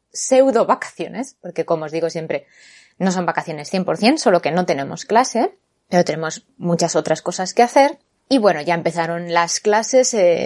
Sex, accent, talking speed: female, Spanish, 170 wpm